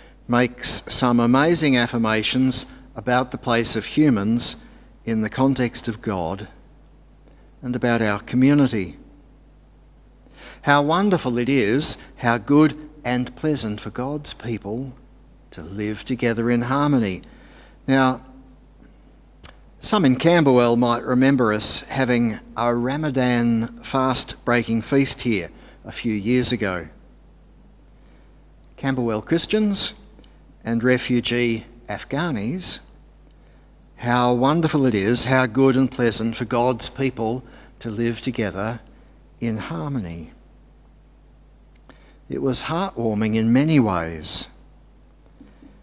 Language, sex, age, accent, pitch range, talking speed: English, male, 50-69, Australian, 115-140 Hz, 100 wpm